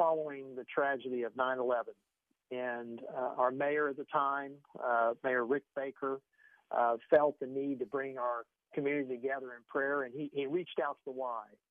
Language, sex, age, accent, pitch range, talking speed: English, male, 50-69, American, 125-150 Hz, 180 wpm